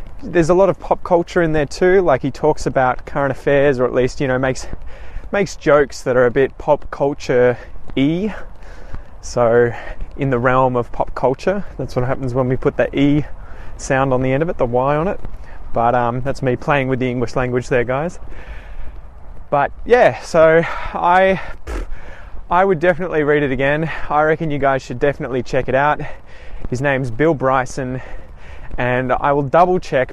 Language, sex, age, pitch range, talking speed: English, male, 20-39, 115-145 Hz, 185 wpm